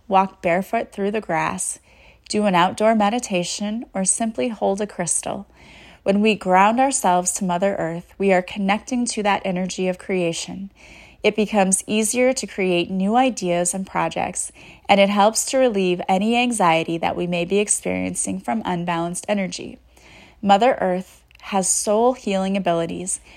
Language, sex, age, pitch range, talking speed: English, female, 30-49, 180-215 Hz, 150 wpm